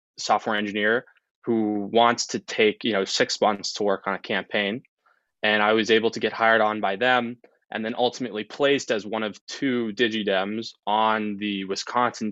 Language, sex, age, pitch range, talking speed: English, male, 20-39, 100-120 Hz, 180 wpm